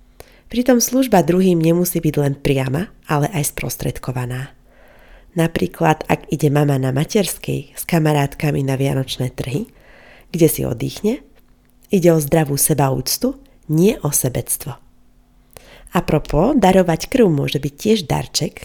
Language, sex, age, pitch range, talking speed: Slovak, female, 30-49, 140-195 Hz, 120 wpm